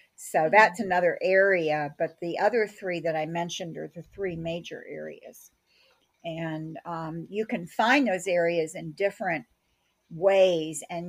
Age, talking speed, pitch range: 50-69, 145 wpm, 165-190 Hz